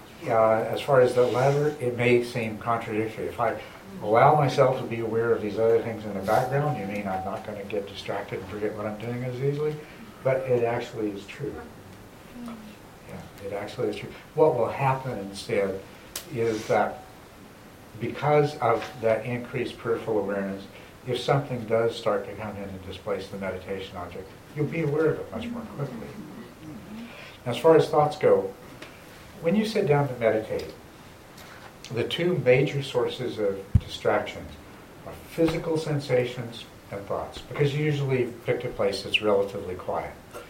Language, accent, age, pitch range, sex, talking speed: English, American, 60-79, 95-125 Hz, male, 165 wpm